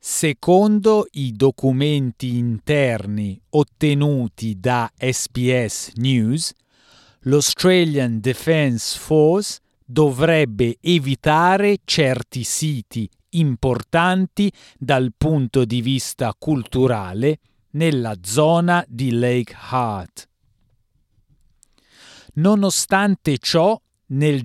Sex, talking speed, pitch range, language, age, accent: male, 70 wpm, 120-165 Hz, Italian, 40-59, native